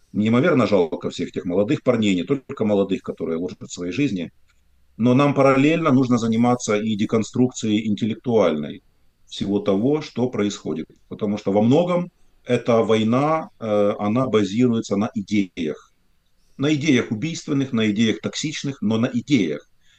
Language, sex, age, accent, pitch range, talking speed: Russian, male, 40-59, native, 105-140 Hz, 135 wpm